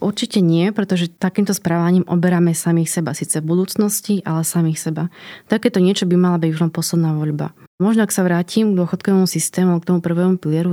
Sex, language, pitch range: female, Slovak, 165-195 Hz